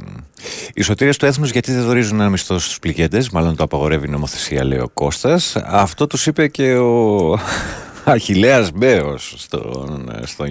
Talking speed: 155 wpm